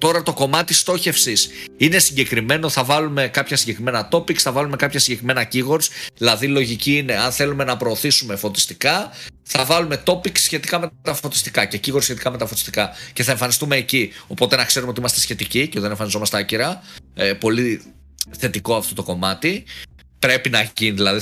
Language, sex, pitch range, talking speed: Greek, male, 105-145 Hz, 175 wpm